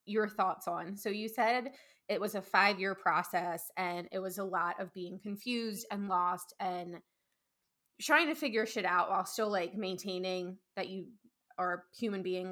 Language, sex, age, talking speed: English, female, 20-39, 175 wpm